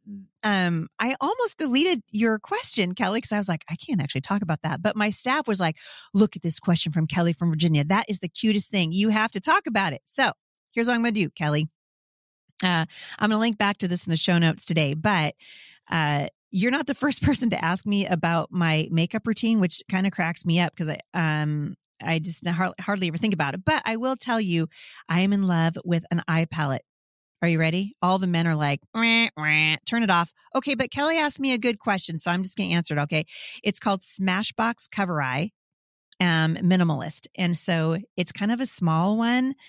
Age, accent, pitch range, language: 30-49, American, 160-205 Hz, English